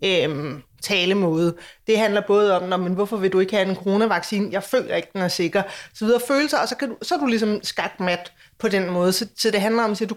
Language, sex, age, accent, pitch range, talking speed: Danish, female, 30-49, native, 205-255 Hz, 255 wpm